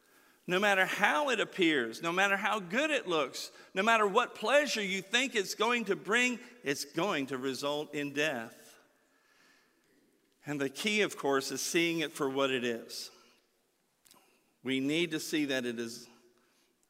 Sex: male